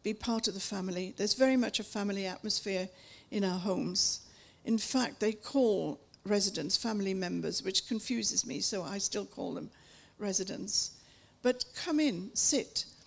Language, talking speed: English, 155 wpm